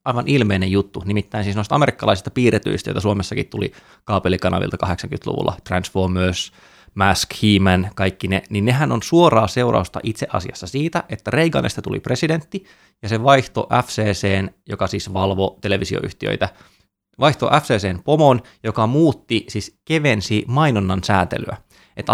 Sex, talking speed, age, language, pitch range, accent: male, 125 wpm, 20-39, Finnish, 95-125 Hz, native